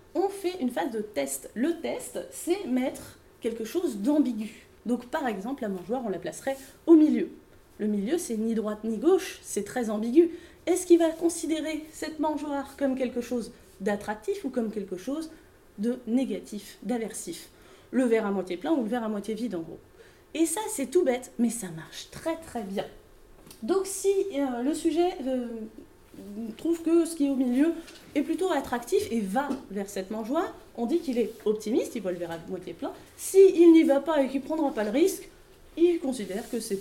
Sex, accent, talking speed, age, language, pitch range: female, French, 200 wpm, 20-39, French, 225-335 Hz